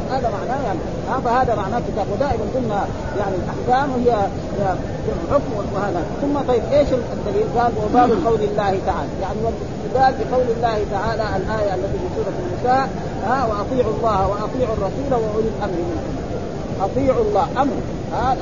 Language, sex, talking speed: Arabic, male, 155 wpm